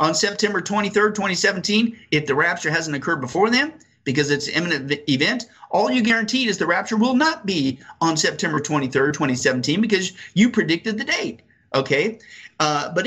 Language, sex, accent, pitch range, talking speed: English, male, American, 160-225 Hz, 170 wpm